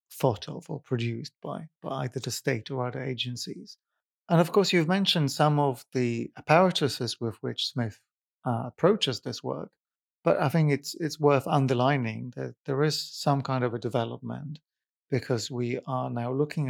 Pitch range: 120-150 Hz